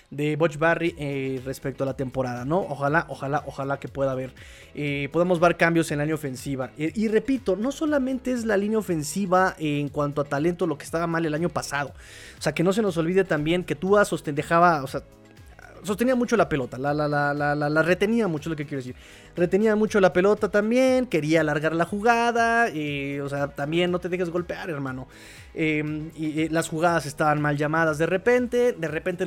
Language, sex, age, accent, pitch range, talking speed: Spanish, male, 20-39, Mexican, 150-195 Hz, 215 wpm